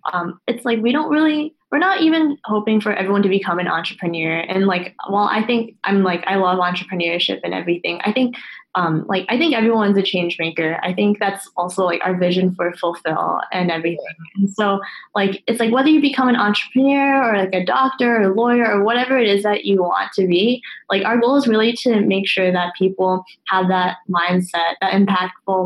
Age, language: 10-29, English